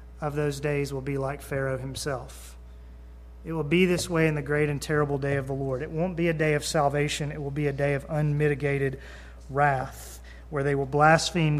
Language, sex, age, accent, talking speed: English, male, 30-49, American, 210 wpm